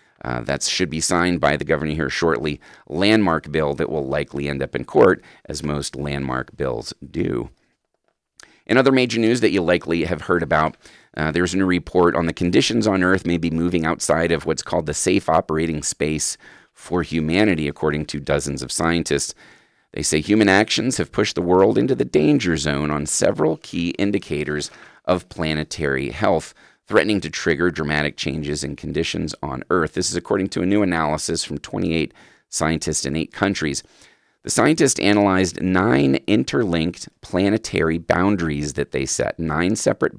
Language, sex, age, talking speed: English, male, 30-49, 170 wpm